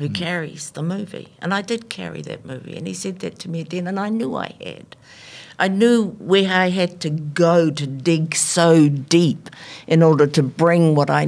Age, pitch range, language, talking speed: 50-69, 150-205 Hz, English, 205 wpm